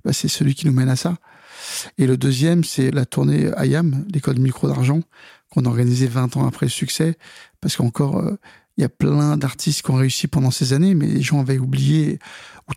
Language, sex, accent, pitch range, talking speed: French, male, French, 135-160 Hz, 220 wpm